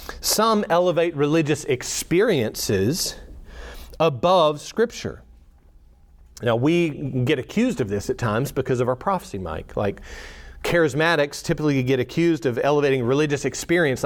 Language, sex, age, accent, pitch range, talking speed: English, male, 40-59, American, 110-165 Hz, 120 wpm